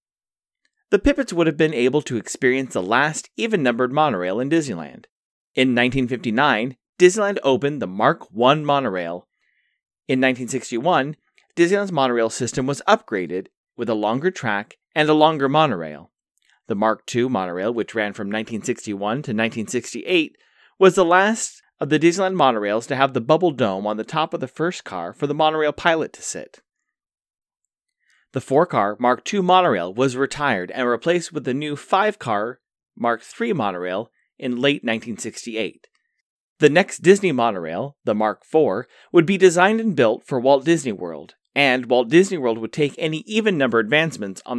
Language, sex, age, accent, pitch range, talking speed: English, male, 30-49, American, 120-175 Hz, 155 wpm